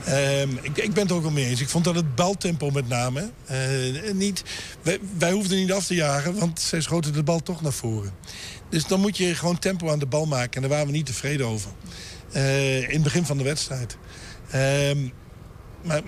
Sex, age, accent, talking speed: male, 60-79, Dutch, 220 wpm